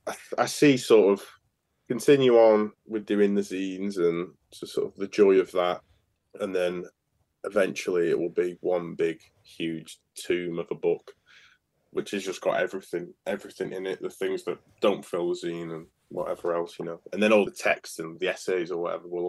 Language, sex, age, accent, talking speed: English, male, 20-39, British, 200 wpm